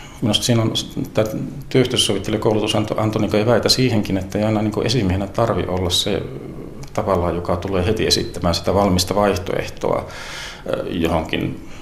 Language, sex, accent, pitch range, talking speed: Finnish, male, native, 90-105 Hz, 130 wpm